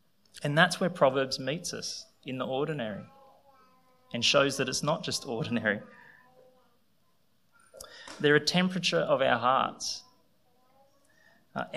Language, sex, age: English, male, 20-39